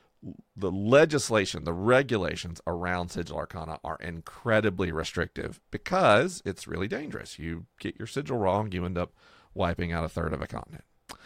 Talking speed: 155 wpm